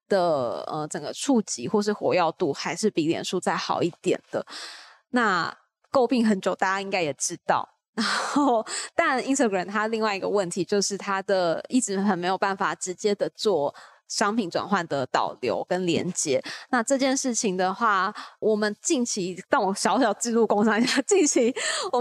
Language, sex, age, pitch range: Chinese, female, 20-39, 200-250 Hz